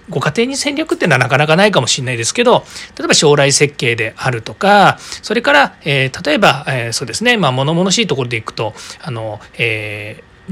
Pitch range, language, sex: 125-205 Hz, Japanese, male